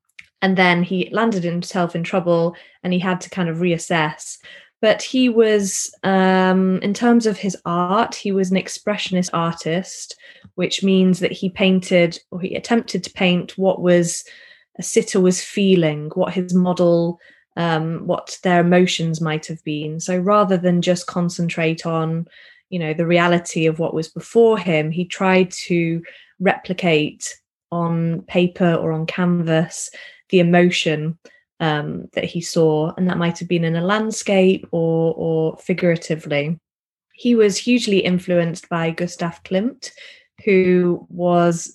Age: 20-39